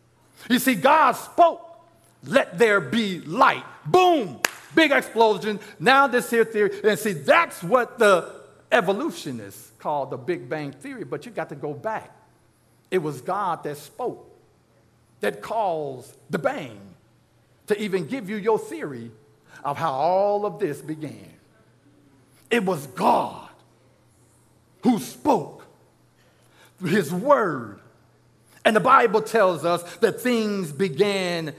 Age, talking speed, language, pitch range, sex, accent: 50-69, 130 wpm, English, 145-235 Hz, male, American